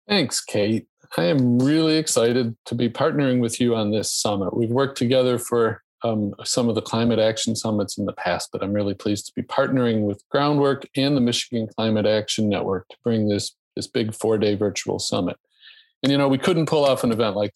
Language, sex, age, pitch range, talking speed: English, male, 40-59, 110-135 Hz, 210 wpm